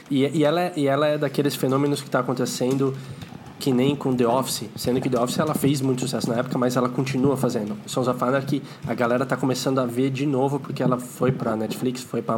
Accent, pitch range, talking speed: Brazilian, 120-145 Hz, 245 wpm